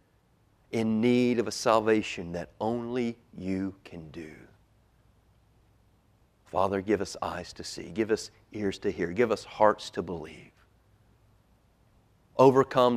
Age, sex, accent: 40-59, male, American